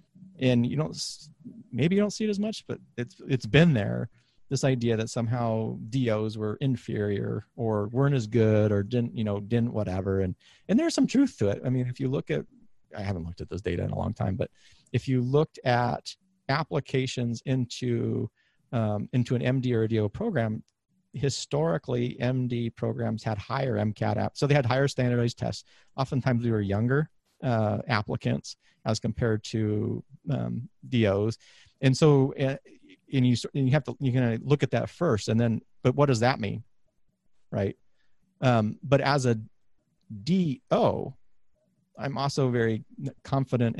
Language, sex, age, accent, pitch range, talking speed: English, male, 40-59, American, 110-135 Hz, 170 wpm